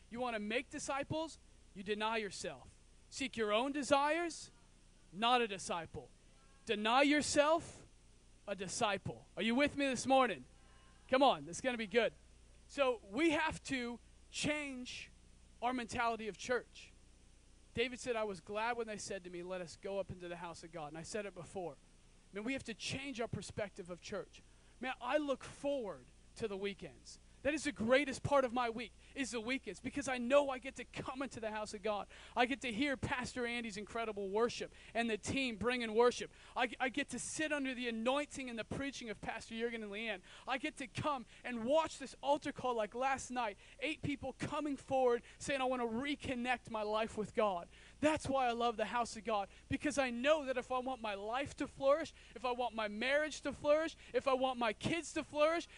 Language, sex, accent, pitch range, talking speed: English, male, American, 215-275 Hz, 205 wpm